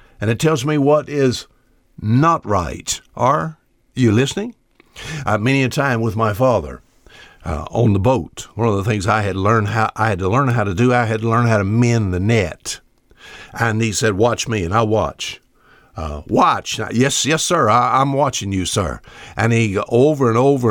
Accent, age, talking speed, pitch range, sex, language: American, 60-79, 205 wpm, 110-140 Hz, male, English